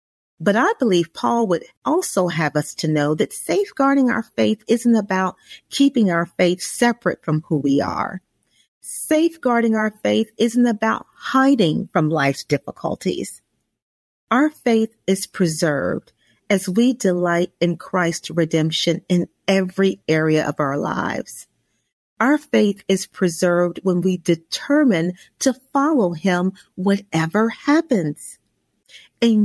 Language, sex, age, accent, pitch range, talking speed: English, female, 40-59, American, 170-255 Hz, 125 wpm